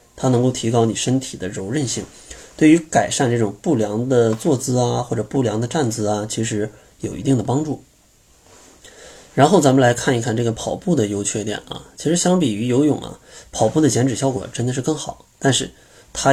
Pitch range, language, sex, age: 110-140 Hz, Chinese, male, 20-39